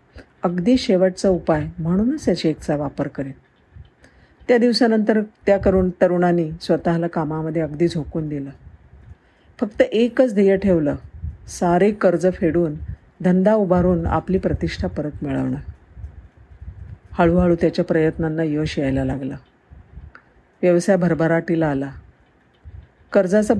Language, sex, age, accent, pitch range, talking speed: Marathi, female, 50-69, native, 135-185 Hz, 105 wpm